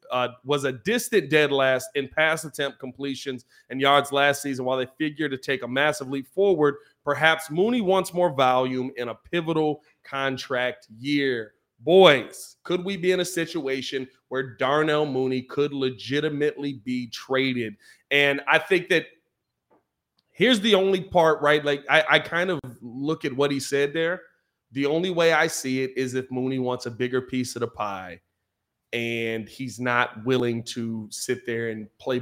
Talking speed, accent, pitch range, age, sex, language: 170 wpm, American, 130-160 Hz, 30-49, male, English